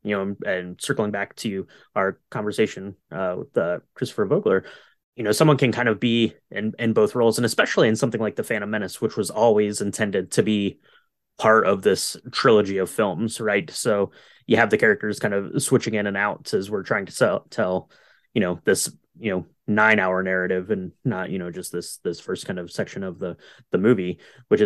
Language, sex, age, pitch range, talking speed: English, male, 20-39, 100-125 Hz, 205 wpm